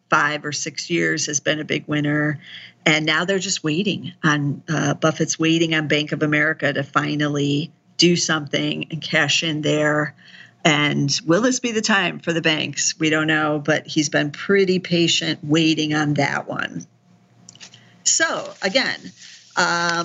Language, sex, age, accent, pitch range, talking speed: English, female, 50-69, American, 155-185 Hz, 155 wpm